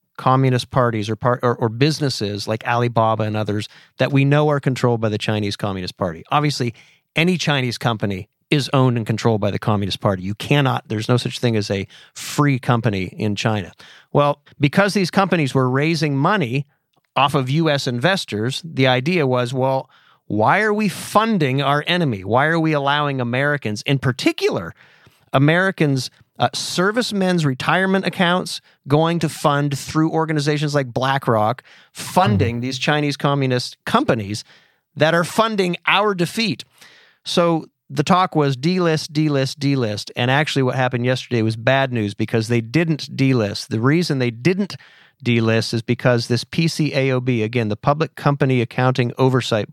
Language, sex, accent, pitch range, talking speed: English, male, American, 120-155 Hz, 155 wpm